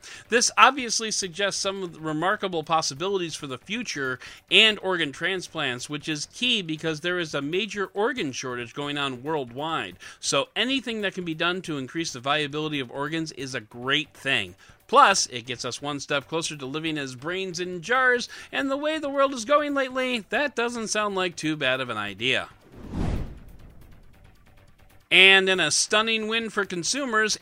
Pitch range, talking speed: 140-215 Hz, 175 wpm